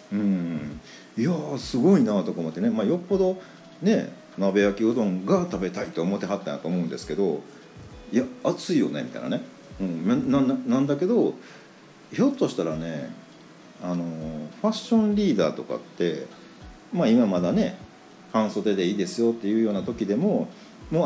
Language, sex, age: Japanese, male, 50-69